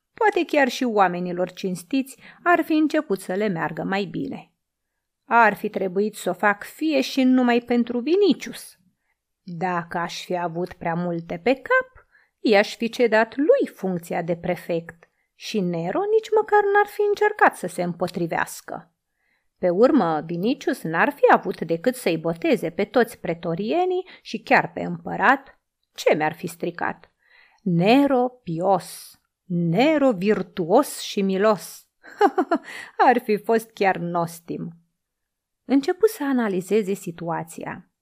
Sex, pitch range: female, 175-260 Hz